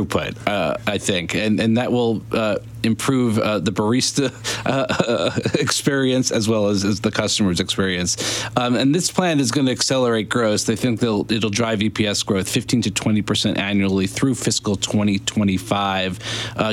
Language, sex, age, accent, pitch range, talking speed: English, male, 40-59, American, 105-125 Hz, 145 wpm